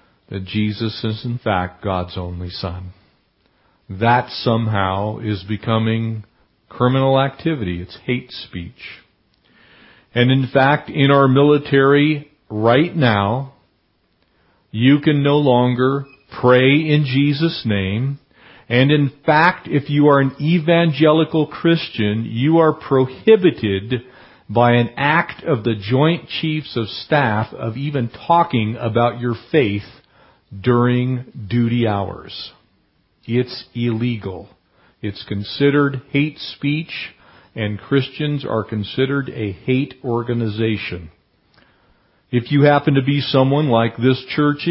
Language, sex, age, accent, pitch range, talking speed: English, male, 40-59, American, 110-140 Hz, 115 wpm